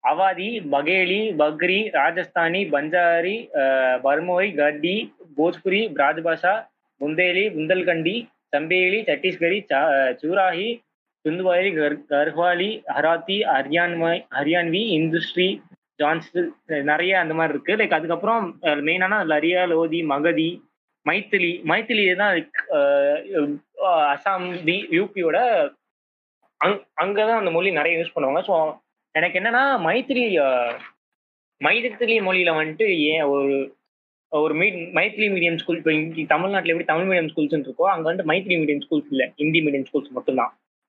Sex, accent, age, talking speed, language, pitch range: male, native, 20-39, 110 wpm, Tamil, 150-190 Hz